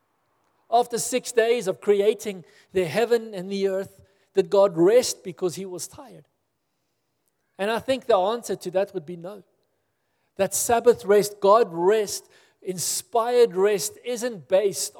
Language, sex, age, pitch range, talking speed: English, male, 50-69, 165-210 Hz, 145 wpm